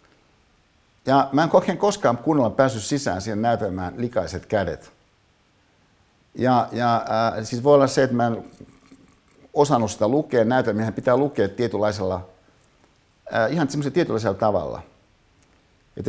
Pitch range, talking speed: 95-125 Hz, 120 wpm